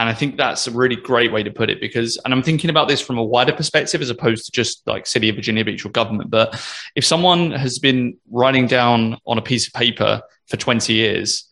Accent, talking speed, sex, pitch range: British, 245 wpm, male, 115-135 Hz